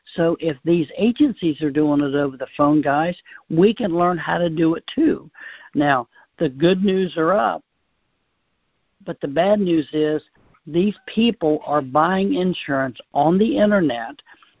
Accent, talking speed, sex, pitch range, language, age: American, 155 wpm, male, 145-175 Hz, English, 60-79